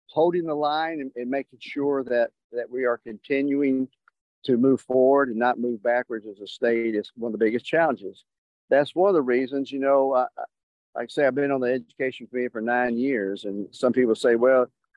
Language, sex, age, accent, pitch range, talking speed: English, male, 50-69, American, 115-140 Hz, 205 wpm